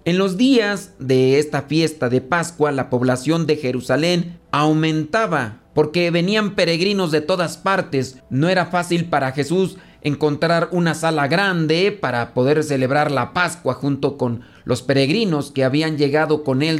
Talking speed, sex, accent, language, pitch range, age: 150 wpm, male, Mexican, Spanish, 135-175 Hz, 40-59